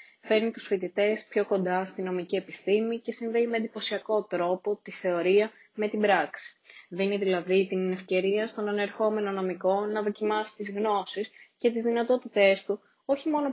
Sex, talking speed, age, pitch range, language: female, 150 wpm, 20-39, 185-220 Hz, Greek